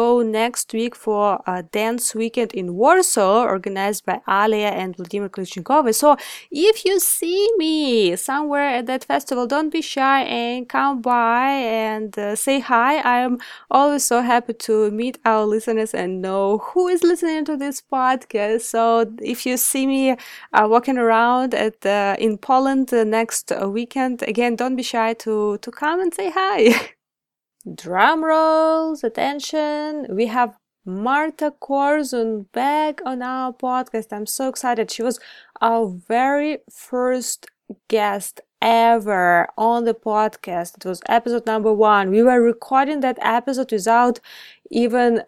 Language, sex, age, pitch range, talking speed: English, female, 20-39, 215-265 Hz, 145 wpm